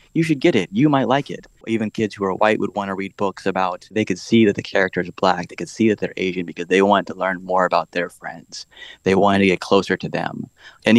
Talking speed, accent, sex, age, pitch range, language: 275 wpm, American, male, 20-39, 95-105 Hz, English